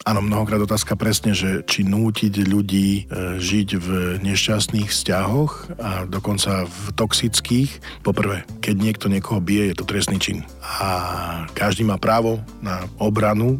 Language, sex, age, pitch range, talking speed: Slovak, male, 40-59, 95-110 Hz, 135 wpm